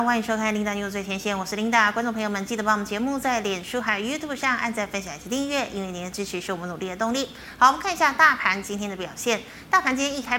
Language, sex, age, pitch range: Chinese, female, 20-39, 200-255 Hz